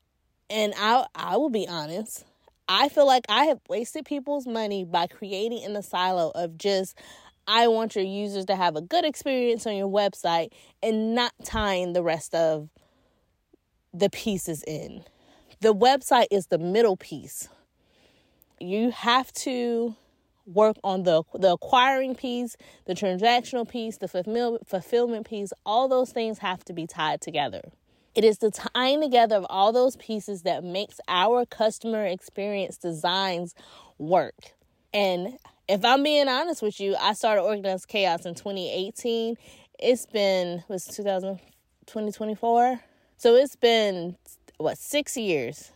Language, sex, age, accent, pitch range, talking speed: English, female, 20-39, American, 185-245 Hz, 145 wpm